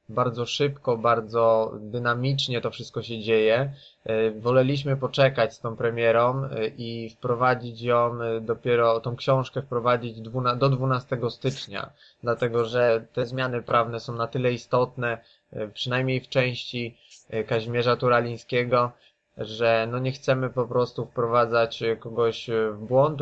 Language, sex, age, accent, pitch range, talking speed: Polish, male, 20-39, native, 115-130 Hz, 120 wpm